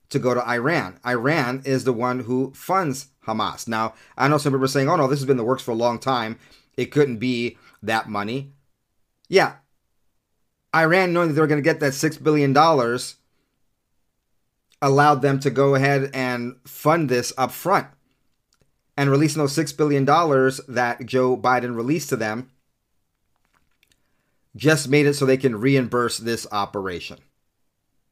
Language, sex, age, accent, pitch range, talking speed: English, male, 30-49, American, 125-150 Hz, 165 wpm